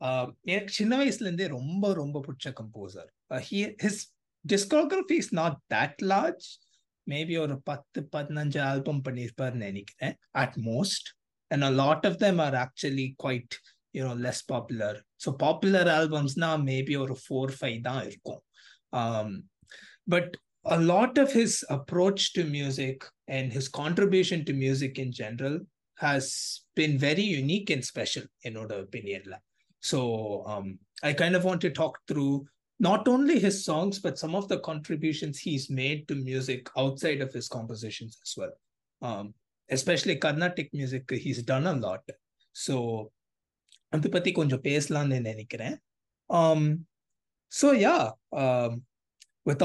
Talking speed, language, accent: 120 wpm, English, Indian